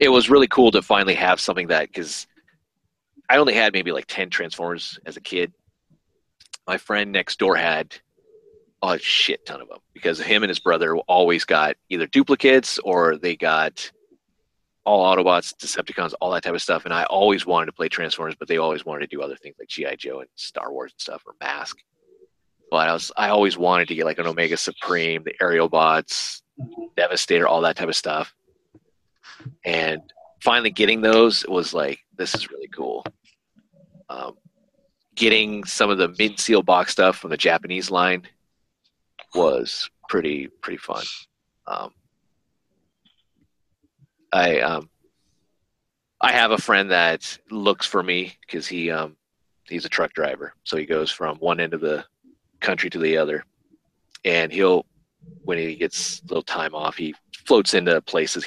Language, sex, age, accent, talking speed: English, male, 30-49, American, 170 wpm